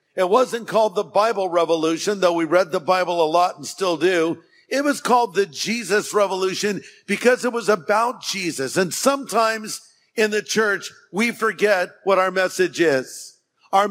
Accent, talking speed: American, 170 wpm